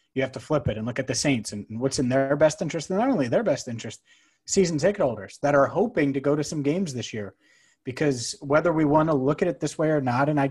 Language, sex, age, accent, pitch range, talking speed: English, male, 30-49, American, 125-150 Hz, 280 wpm